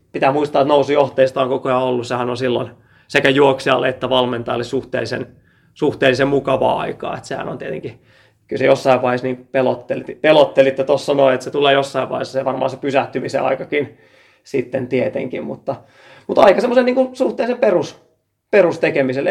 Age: 30-49